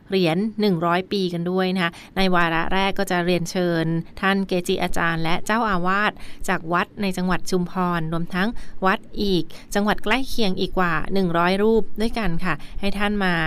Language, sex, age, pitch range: Thai, female, 20-39, 170-205 Hz